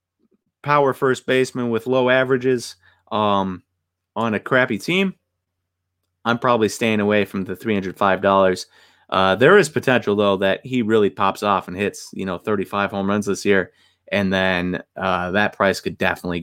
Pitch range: 95-140 Hz